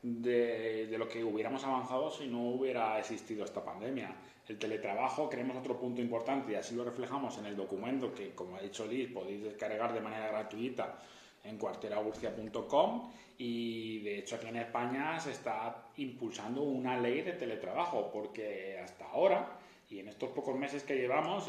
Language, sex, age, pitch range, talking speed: Spanish, male, 30-49, 110-135 Hz, 170 wpm